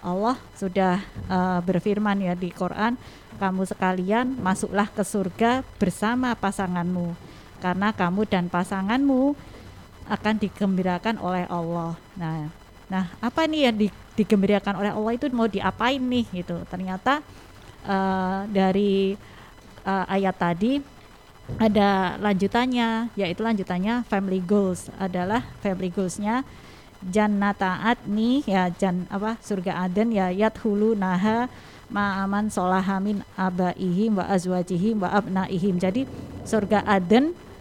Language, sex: Indonesian, female